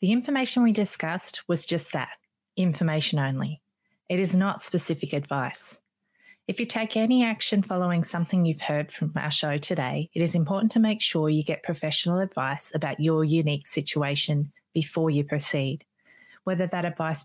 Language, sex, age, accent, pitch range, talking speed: English, female, 30-49, Australian, 155-190 Hz, 165 wpm